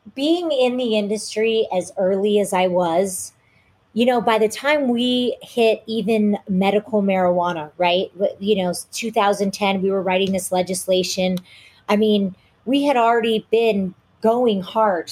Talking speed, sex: 145 wpm, female